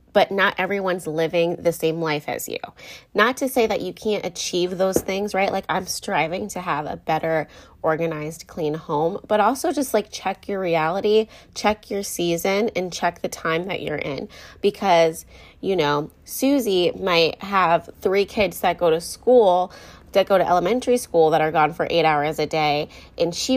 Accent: American